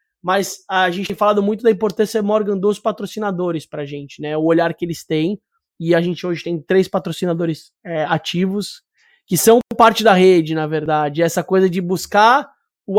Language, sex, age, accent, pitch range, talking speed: Portuguese, male, 20-39, Brazilian, 170-200 Hz, 185 wpm